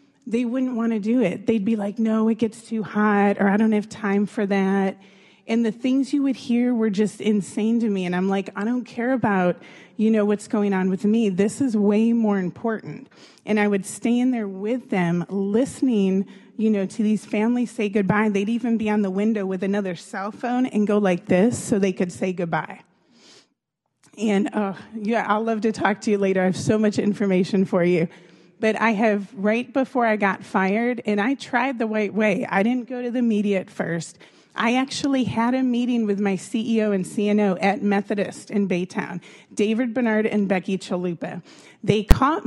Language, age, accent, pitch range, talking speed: English, 30-49, American, 195-230 Hz, 205 wpm